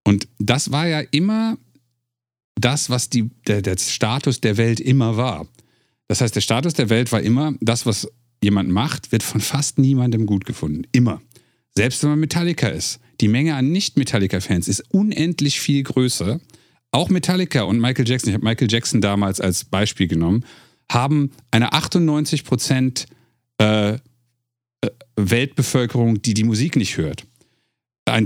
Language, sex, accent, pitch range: German, male, German, 110-135 Hz